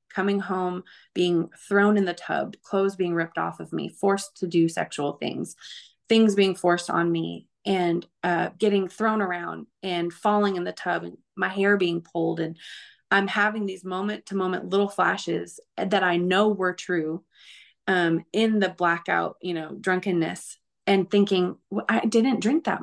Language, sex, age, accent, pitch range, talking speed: English, female, 20-39, American, 175-210 Hz, 175 wpm